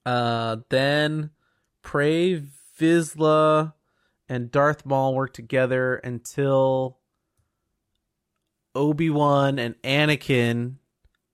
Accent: American